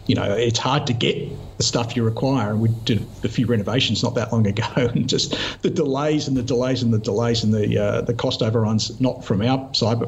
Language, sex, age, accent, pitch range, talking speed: English, male, 50-69, Australian, 105-135 Hz, 245 wpm